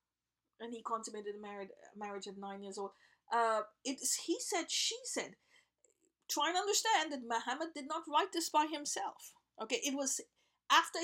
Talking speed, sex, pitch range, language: 175 wpm, female, 230-320 Hz, English